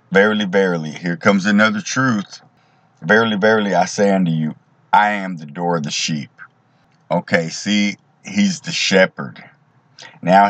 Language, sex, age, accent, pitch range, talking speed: English, male, 50-69, American, 90-125 Hz, 145 wpm